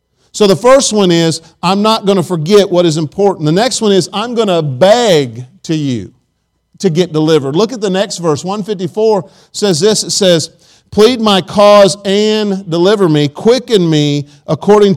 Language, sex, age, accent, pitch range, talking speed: English, male, 50-69, American, 160-205 Hz, 180 wpm